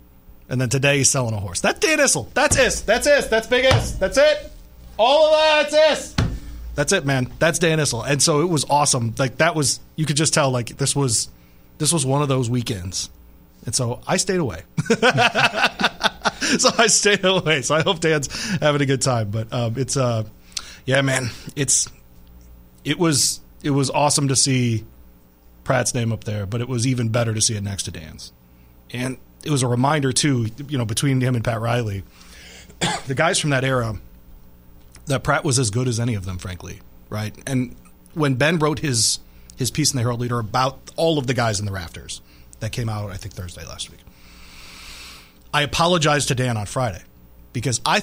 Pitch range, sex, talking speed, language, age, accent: 90-145 Hz, male, 200 wpm, English, 30-49, American